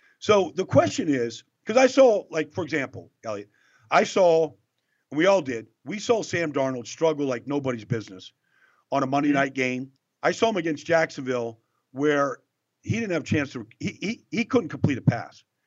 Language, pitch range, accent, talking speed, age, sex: English, 130-180 Hz, American, 180 wpm, 50-69, male